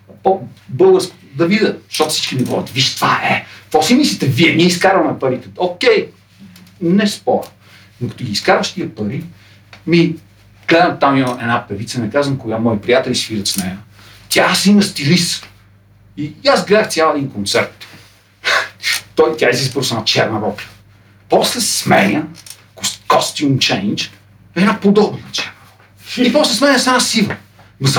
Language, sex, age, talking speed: Bulgarian, male, 50-69, 155 wpm